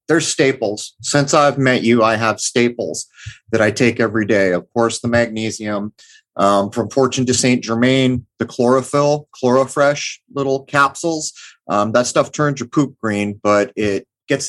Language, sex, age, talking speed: English, male, 30-49, 160 wpm